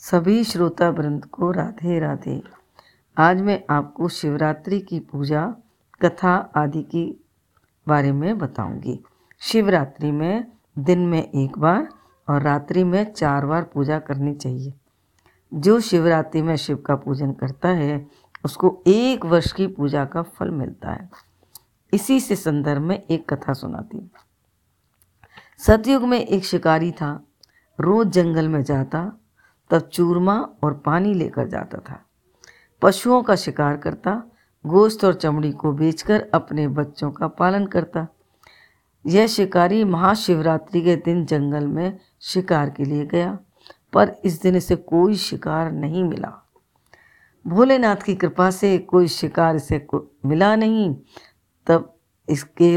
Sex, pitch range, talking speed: female, 150-190 Hz, 135 wpm